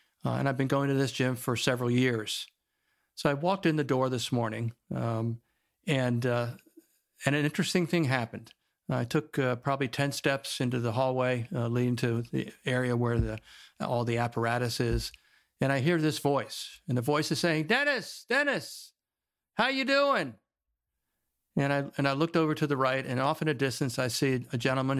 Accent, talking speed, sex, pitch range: American, 190 wpm, male, 120-150 Hz